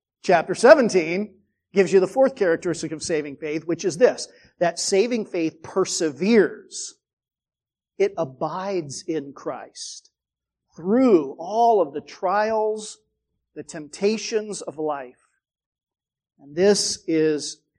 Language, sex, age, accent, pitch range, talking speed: English, male, 50-69, American, 155-205 Hz, 110 wpm